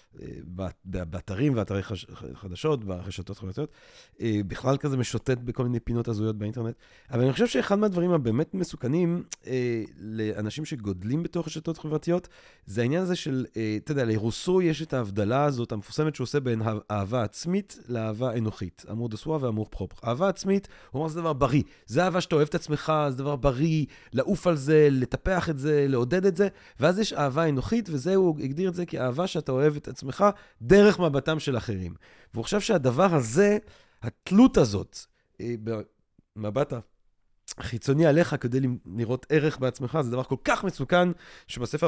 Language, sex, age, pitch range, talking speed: Hebrew, male, 30-49, 115-165 Hz, 140 wpm